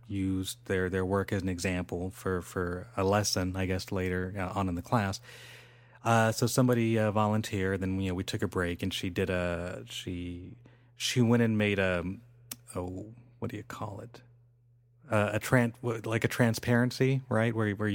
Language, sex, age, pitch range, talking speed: English, male, 30-49, 95-120 Hz, 185 wpm